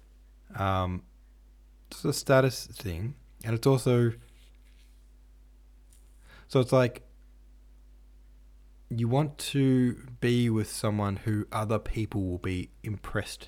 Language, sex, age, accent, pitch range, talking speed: English, male, 20-39, Australian, 85-115 Hz, 100 wpm